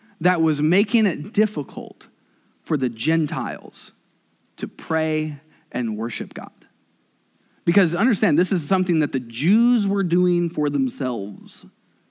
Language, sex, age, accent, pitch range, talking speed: English, male, 20-39, American, 165-210 Hz, 125 wpm